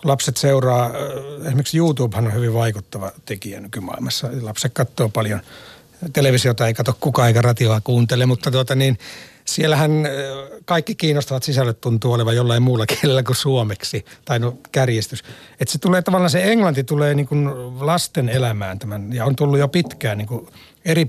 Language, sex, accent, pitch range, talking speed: Finnish, male, native, 120-160 Hz, 150 wpm